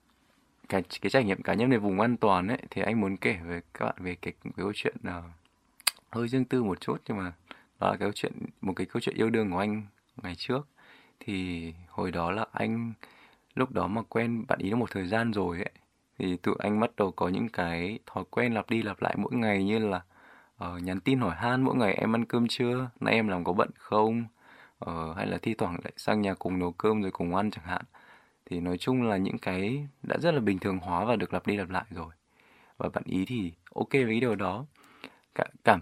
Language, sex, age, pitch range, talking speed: Vietnamese, male, 20-39, 90-115 Hz, 230 wpm